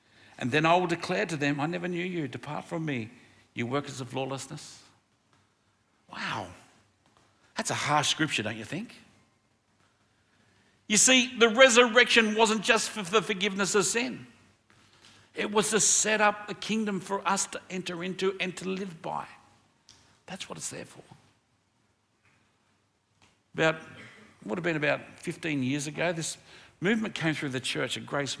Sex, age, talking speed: male, 60-79, 160 wpm